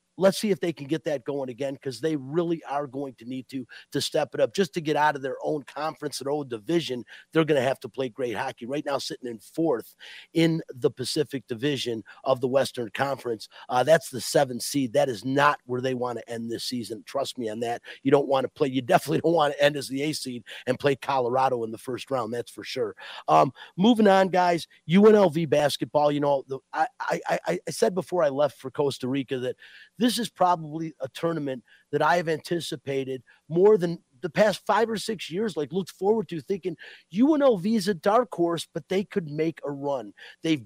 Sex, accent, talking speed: male, American, 225 wpm